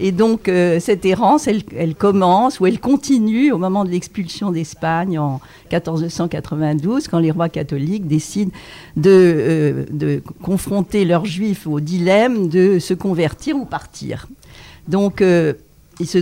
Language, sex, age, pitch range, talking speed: French, female, 50-69, 150-190 Hz, 150 wpm